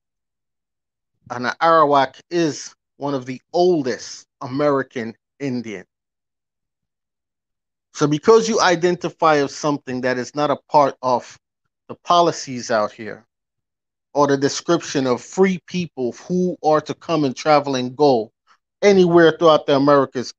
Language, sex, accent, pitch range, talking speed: English, male, American, 125-160 Hz, 125 wpm